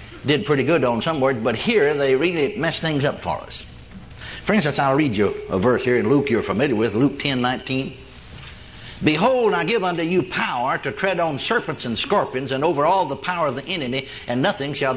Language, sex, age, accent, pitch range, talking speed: English, male, 60-79, American, 135-195 Hz, 215 wpm